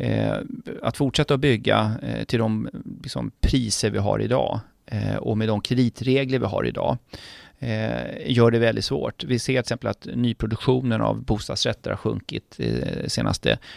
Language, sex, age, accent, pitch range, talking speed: Swedish, male, 30-49, native, 110-135 Hz, 160 wpm